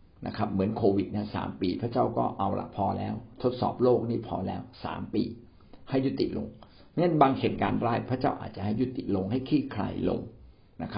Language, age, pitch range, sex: Thai, 60-79, 100-125 Hz, male